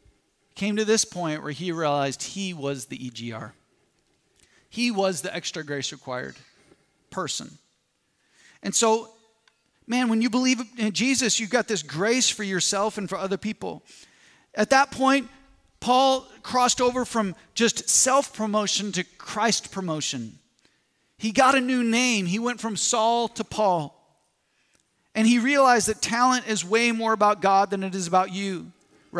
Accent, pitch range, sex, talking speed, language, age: American, 175-230 Hz, male, 155 wpm, English, 40-59